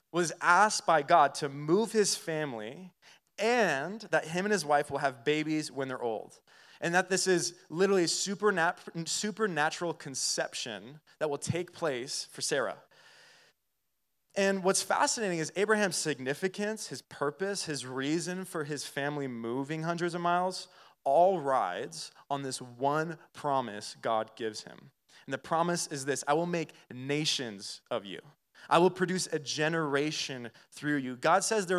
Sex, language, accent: male, English, American